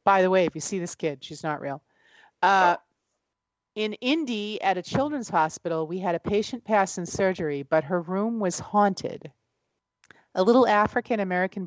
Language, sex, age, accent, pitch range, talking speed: English, female, 40-59, American, 155-200 Hz, 170 wpm